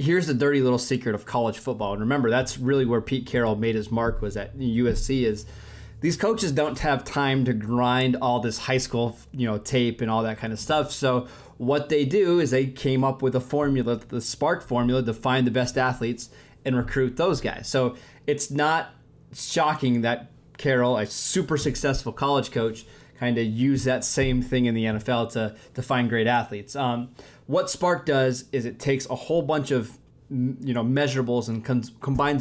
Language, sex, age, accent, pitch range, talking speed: English, male, 20-39, American, 115-140 Hz, 195 wpm